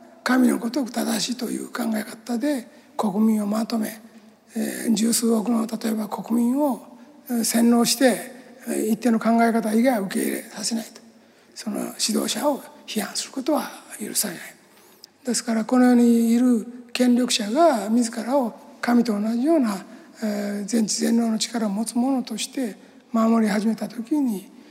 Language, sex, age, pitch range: Japanese, male, 60-79, 225-260 Hz